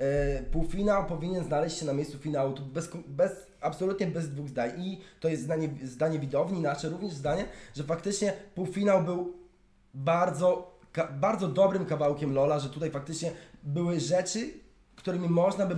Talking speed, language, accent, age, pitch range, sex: 150 wpm, Polish, native, 20-39, 150-190 Hz, male